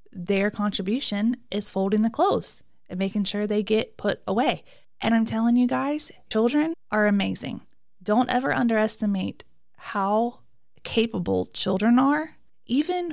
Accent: American